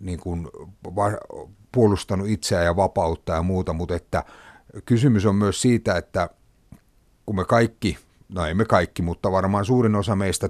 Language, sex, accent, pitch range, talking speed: Finnish, male, native, 90-110 Hz, 155 wpm